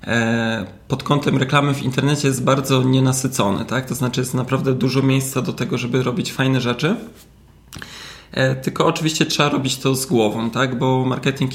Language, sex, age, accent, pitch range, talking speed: Polish, male, 20-39, native, 120-135 Hz, 160 wpm